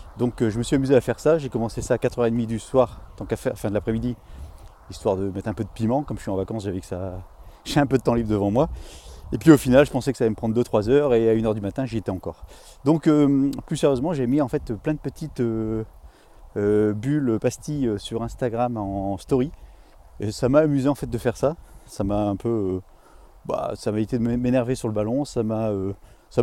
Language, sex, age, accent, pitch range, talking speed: French, male, 30-49, French, 100-130 Hz, 255 wpm